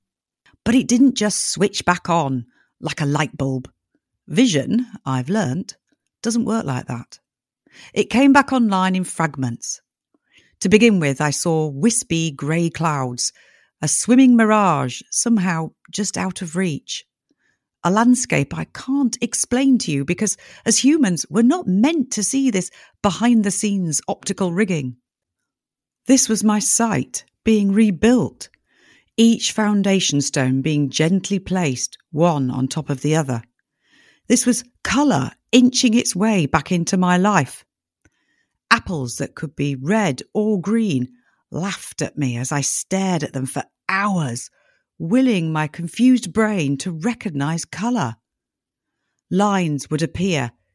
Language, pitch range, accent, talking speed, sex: English, 145-220 Hz, British, 135 wpm, female